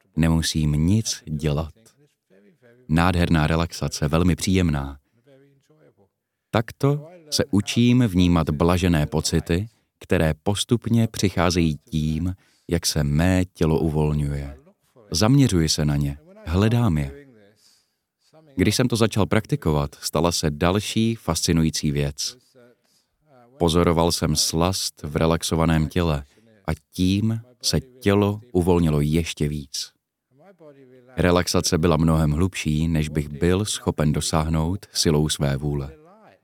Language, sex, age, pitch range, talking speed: Czech, male, 30-49, 80-110 Hz, 105 wpm